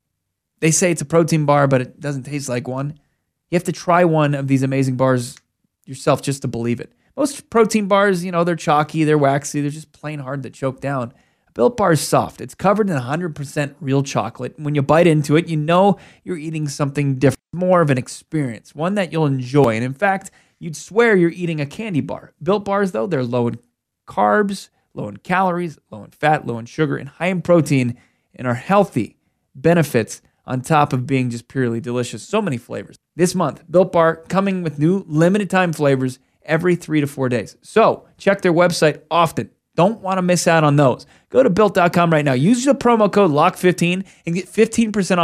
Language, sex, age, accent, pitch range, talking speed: English, male, 20-39, American, 135-180 Hz, 205 wpm